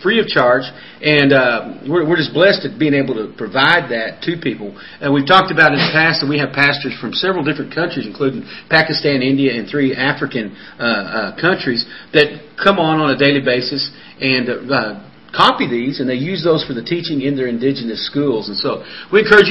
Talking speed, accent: 205 wpm, American